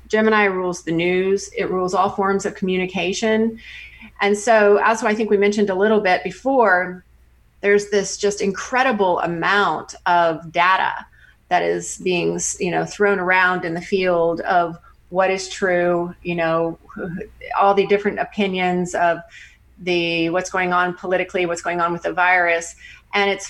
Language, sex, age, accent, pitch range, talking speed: English, female, 30-49, American, 175-205 Hz, 160 wpm